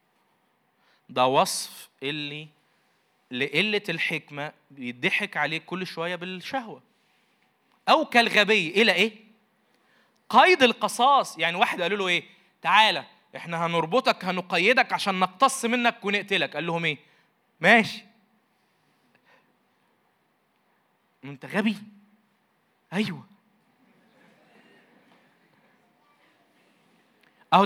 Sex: male